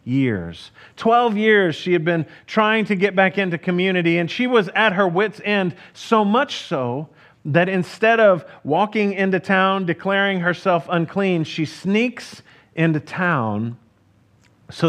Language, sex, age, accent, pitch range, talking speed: English, male, 40-59, American, 145-200 Hz, 145 wpm